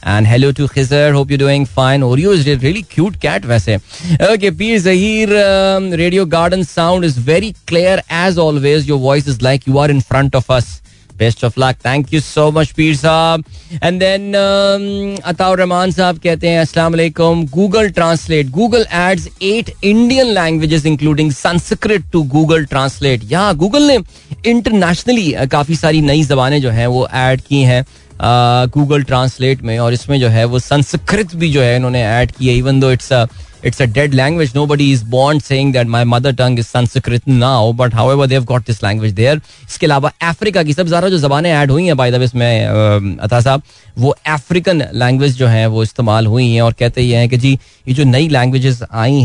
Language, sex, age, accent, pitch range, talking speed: Hindi, male, 20-39, native, 125-170 Hz, 155 wpm